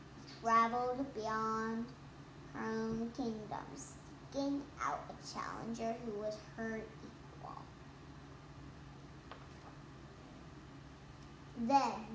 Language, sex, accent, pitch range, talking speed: English, male, American, 230-310 Hz, 70 wpm